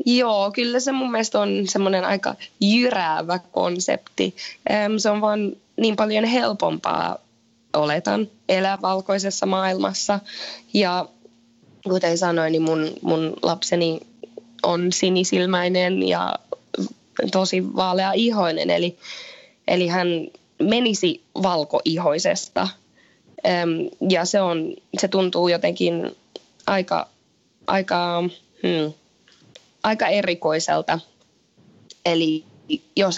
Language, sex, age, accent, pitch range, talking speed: Finnish, female, 20-39, native, 170-210 Hz, 90 wpm